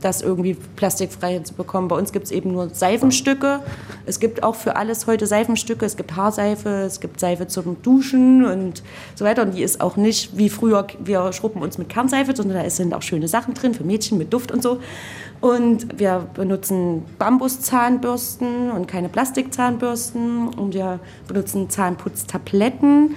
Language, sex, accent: German, female, German